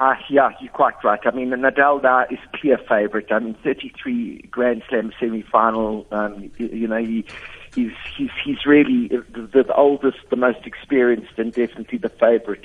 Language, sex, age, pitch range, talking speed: English, male, 60-79, 115-150 Hz, 190 wpm